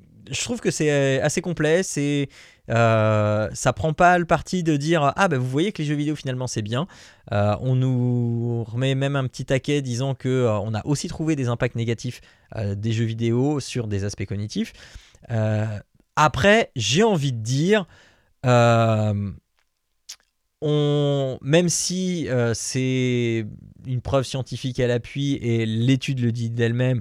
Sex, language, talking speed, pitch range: male, French, 165 wpm, 110-140 Hz